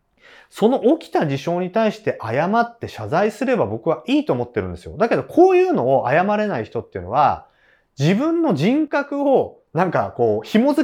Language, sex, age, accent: Japanese, male, 30-49, native